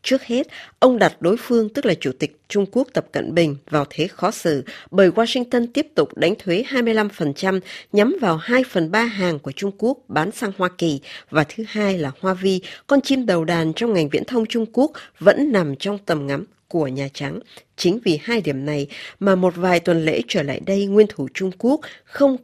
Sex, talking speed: female, 215 wpm